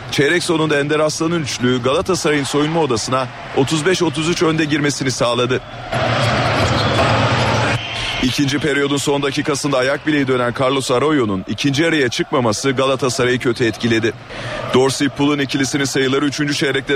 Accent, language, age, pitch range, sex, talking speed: native, Turkish, 40-59, 125-150 Hz, male, 115 wpm